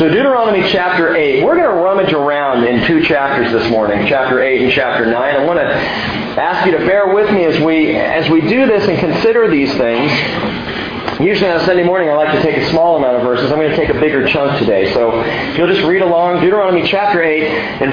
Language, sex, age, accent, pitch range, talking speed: English, male, 40-59, American, 130-195 Hz, 230 wpm